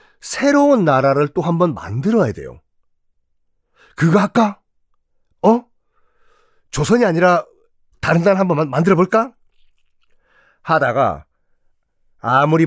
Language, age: Korean, 40-59